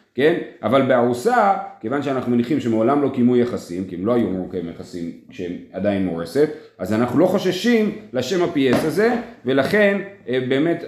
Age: 30-49